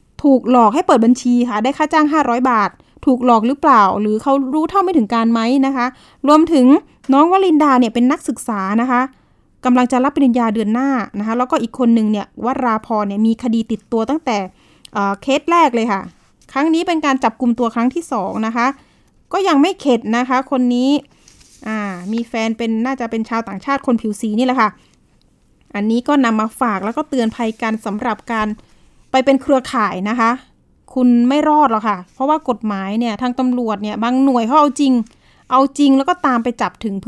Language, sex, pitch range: Thai, female, 220-275 Hz